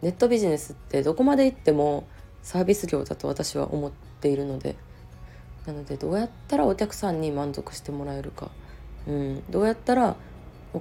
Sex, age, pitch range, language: female, 20-39, 105-175 Hz, Japanese